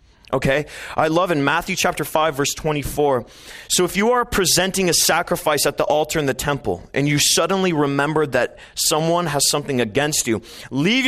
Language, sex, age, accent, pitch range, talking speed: English, male, 30-49, American, 130-175 Hz, 180 wpm